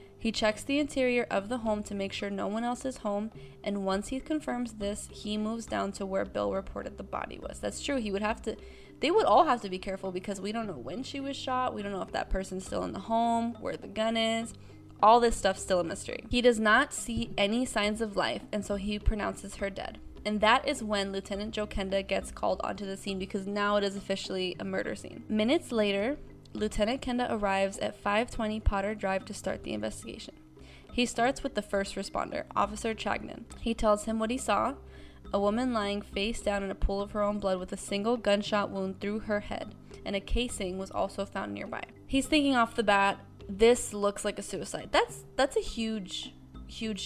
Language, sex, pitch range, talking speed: English, female, 195-230 Hz, 220 wpm